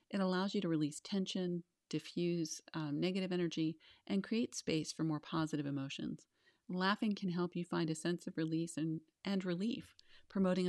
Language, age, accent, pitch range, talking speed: English, 40-59, American, 150-185 Hz, 170 wpm